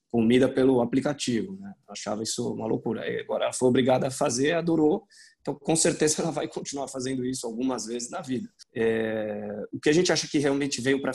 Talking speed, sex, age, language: 205 wpm, male, 20-39, Portuguese